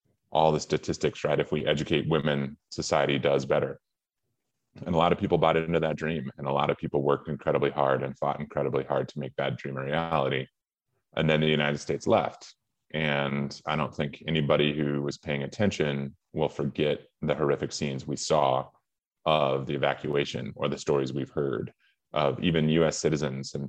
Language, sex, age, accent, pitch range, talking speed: English, male, 30-49, American, 70-80 Hz, 185 wpm